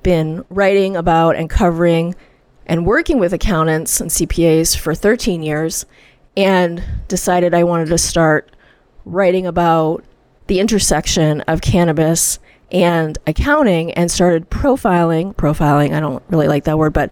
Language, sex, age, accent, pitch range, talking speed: English, female, 30-49, American, 160-195 Hz, 135 wpm